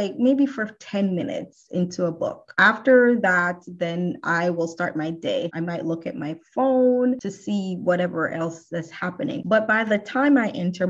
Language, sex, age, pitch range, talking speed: English, female, 20-39, 175-225 Hz, 185 wpm